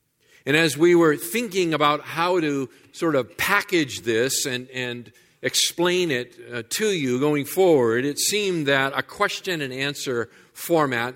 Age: 50-69